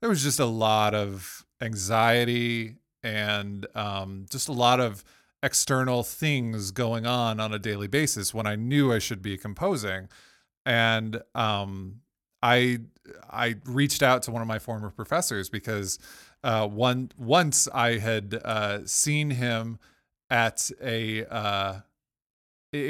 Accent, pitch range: American, 105-125 Hz